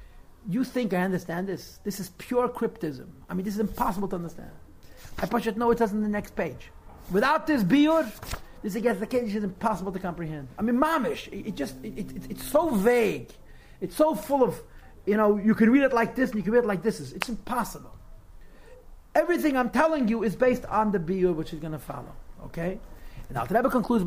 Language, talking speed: English, 215 wpm